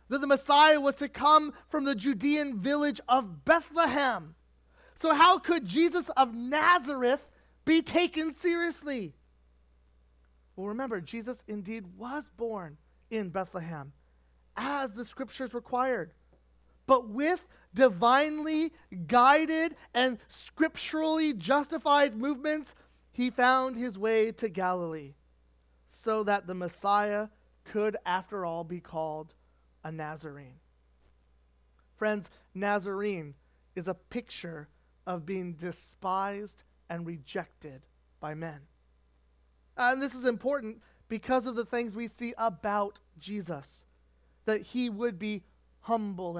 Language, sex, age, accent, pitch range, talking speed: English, male, 30-49, American, 170-255 Hz, 110 wpm